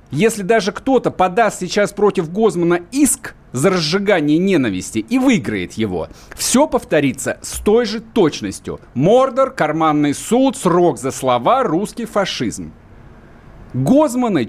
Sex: male